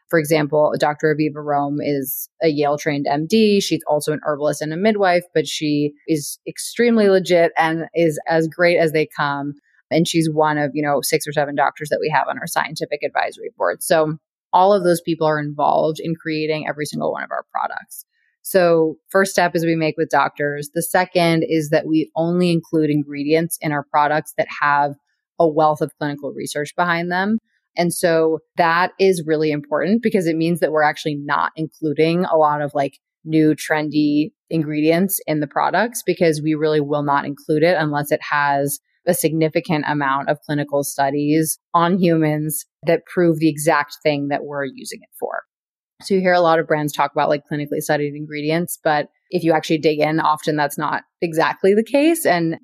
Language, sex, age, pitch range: English, female, 30-49, 150-170 Hz